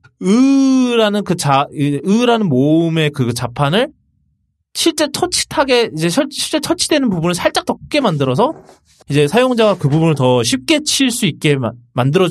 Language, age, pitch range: Korean, 20-39, 130-215 Hz